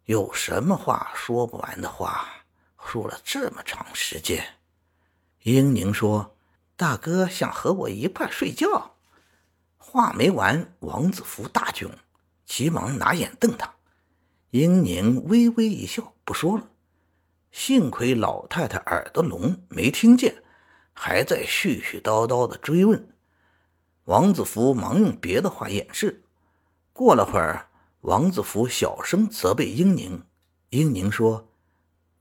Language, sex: Chinese, male